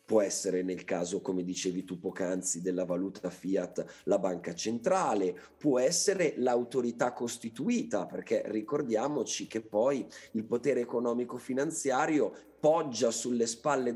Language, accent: Italian, native